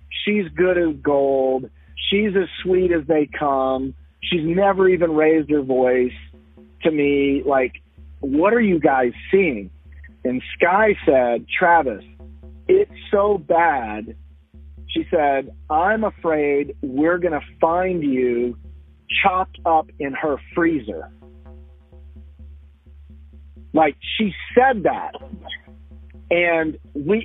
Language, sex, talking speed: English, male, 110 wpm